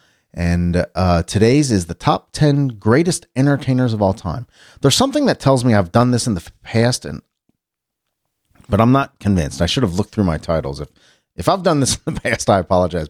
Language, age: English, 40-59